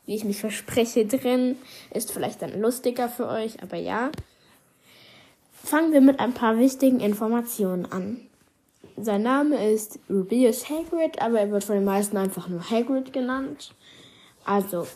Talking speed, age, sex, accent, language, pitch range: 150 wpm, 20-39, female, German, German, 205-265 Hz